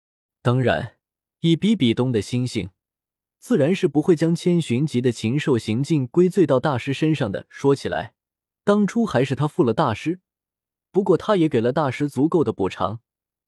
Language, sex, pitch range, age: Chinese, male, 110-155 Hz, 20-39